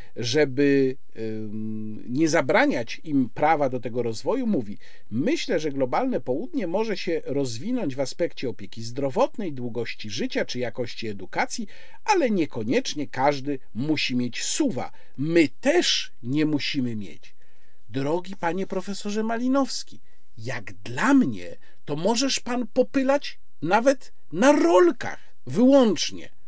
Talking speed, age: 115 wpm, 50-69